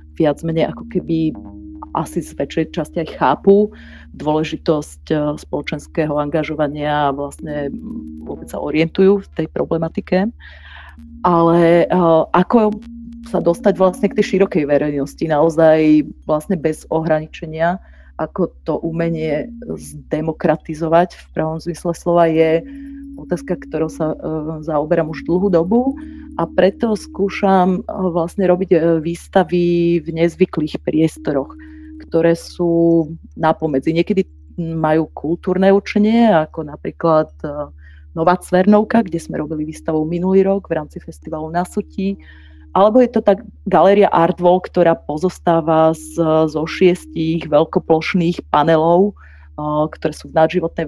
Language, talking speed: Slovak, 110 wpm